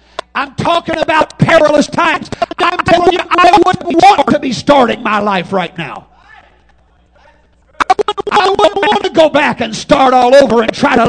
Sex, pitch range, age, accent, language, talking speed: male, 235-325 Hz, 50-69, American, English, 170 wpm